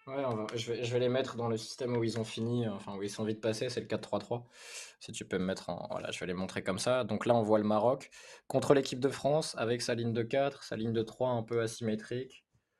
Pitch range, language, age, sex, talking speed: 105-130 Hz, French, 20-39, male, 280 wpm